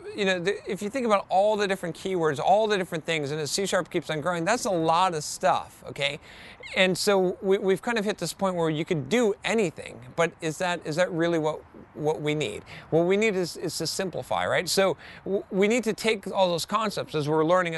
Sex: male